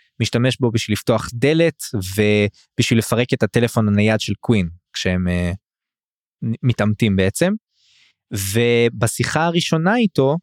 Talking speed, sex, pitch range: 85 wpm, male, 110-135 Hz